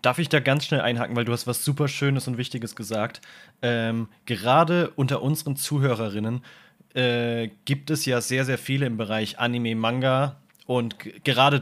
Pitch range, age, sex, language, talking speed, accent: 120-140 Hz, 20-39, male, German, 175 wpm, German